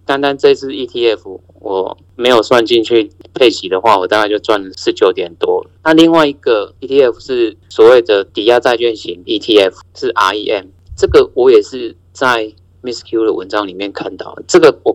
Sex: male